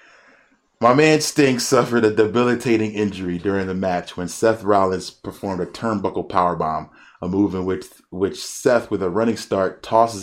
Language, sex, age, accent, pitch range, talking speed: English, male, 30-49, American, 85-105 Hz, 165 wpm